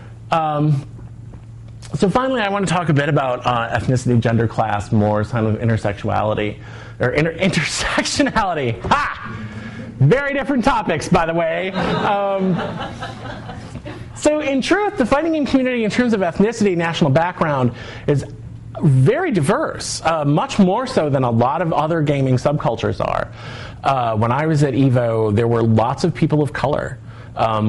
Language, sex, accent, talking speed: English, male, American, 155 wpm